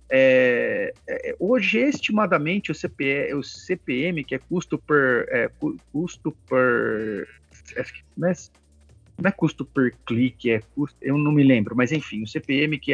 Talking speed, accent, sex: 150 wpm, Brazilian, male